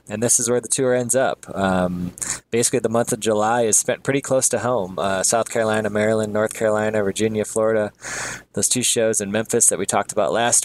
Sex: male